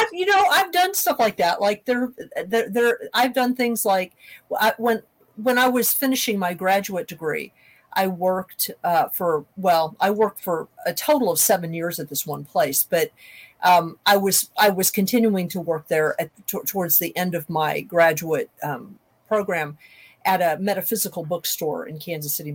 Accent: American